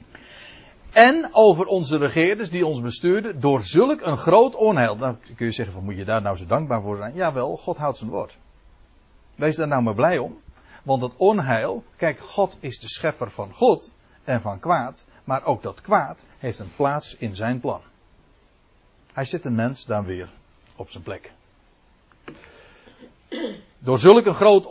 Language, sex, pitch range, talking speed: Dutch, male, 120-195 Hz, 175 wpm